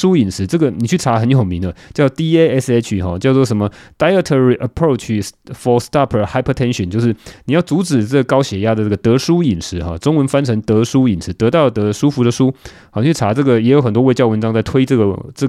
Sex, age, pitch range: male, 20-39, 115-165 Hz